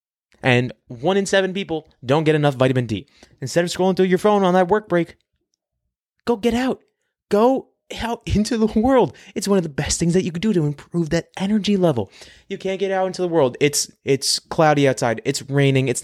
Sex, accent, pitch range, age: male, American, 140-205 Hz, 20-39